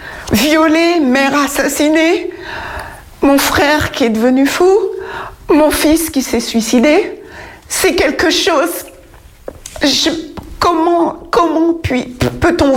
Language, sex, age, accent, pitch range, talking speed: French, female, 60-79, French, 265-320 Hz, 105 wpm